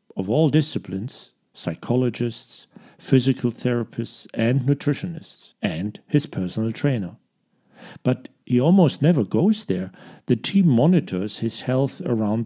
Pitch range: 110-155 Hz